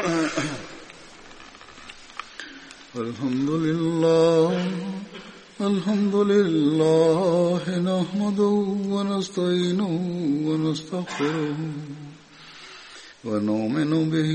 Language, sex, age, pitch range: Bulgarian, male, 50-69, 155-200 Hz